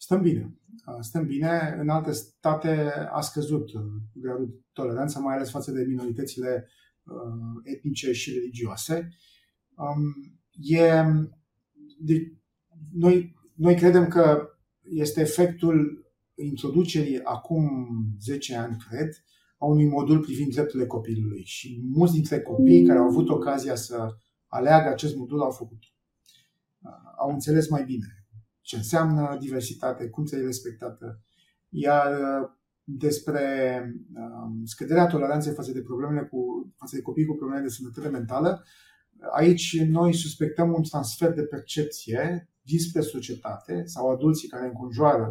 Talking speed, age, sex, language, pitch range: 115 wpm, 30-49, male, Romanian, 120-155 Hz